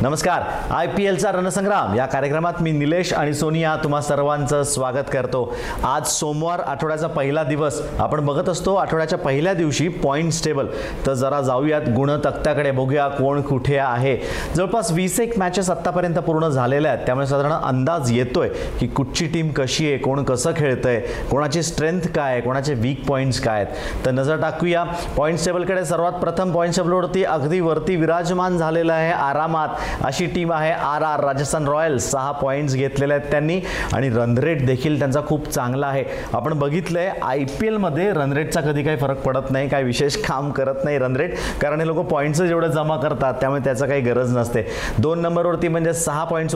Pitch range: 135-165 Hz